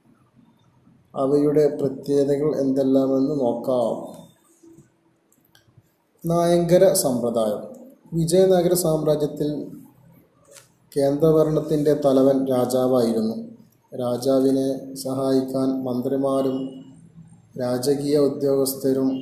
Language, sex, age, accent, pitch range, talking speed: Malayalam, male, 20-39, native, 130-145 Hz, 50 wpm